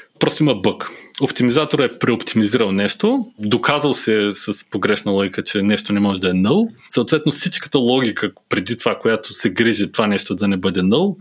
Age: 20-39